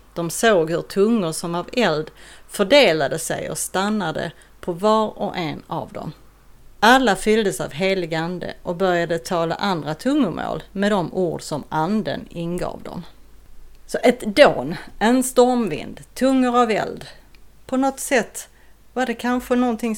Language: Swedish